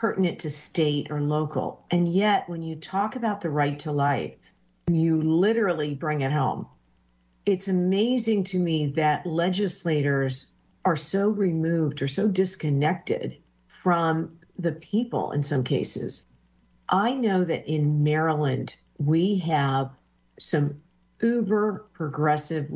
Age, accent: 50-69, American